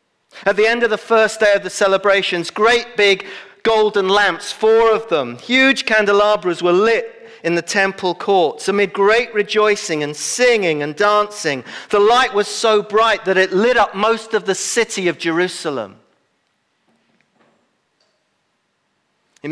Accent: British